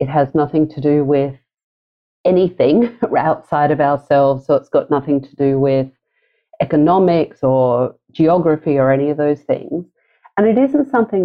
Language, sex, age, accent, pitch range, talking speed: English, female, 40-59, Australian, 130-165 Hz, 155 wpm